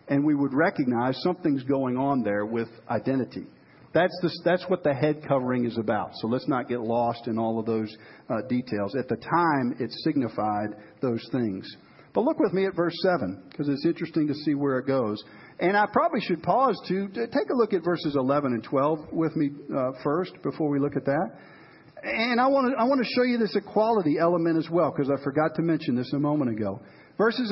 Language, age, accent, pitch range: English, 50-69, American, 125-180 Hz